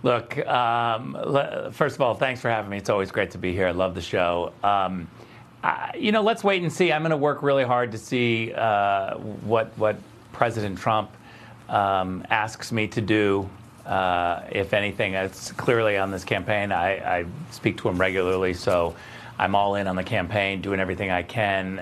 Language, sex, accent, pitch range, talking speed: English, male, American, 100-125 Hz, 195 wpm